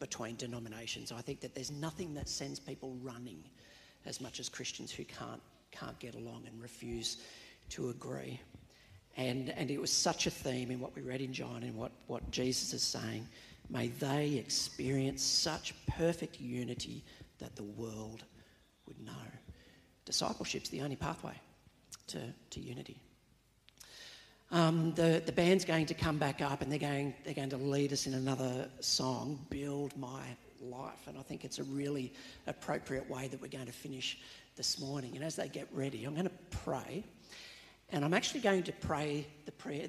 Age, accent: 50-69, Australian